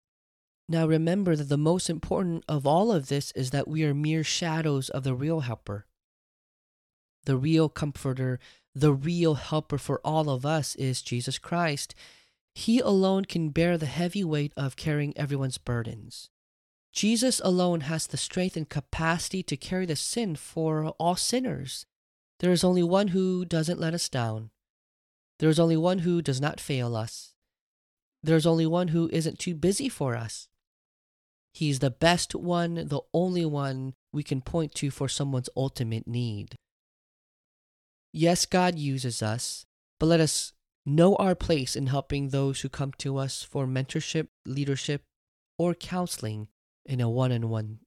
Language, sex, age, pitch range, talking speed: English, male, 20-39, 125-170 Hz, 160 wpm